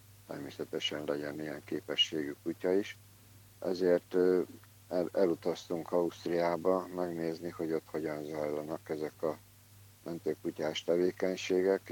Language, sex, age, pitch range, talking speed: Hungarian, male, 60-79, 85-100 Hz, 90 wpm